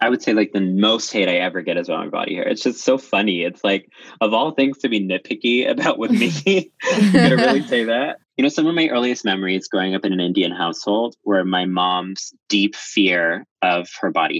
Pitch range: 95-120 Hz